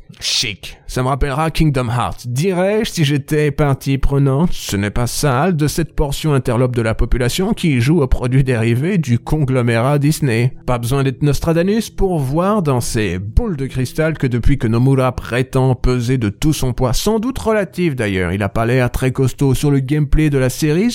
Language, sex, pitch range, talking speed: French, male, 120-155 Hz, 200 wpm